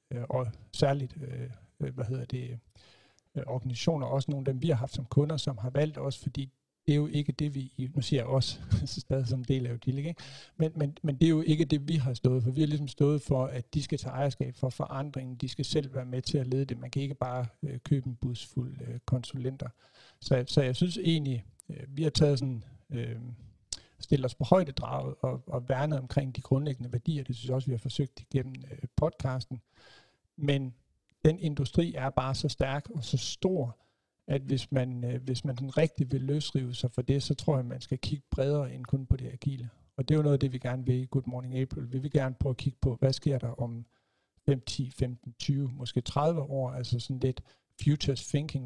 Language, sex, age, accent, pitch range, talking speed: Danish, male, 60-79, native, 125-145 Hz, 230 wpm